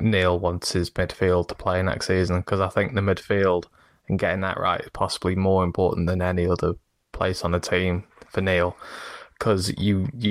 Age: 20-39